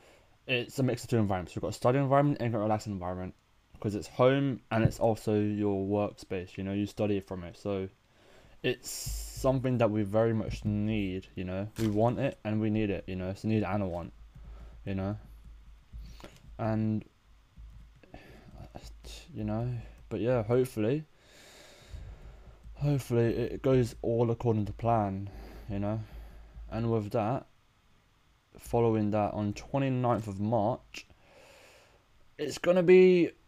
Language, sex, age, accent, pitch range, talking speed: English, male, 20-39, British, 100-115 Hz, 150 wpm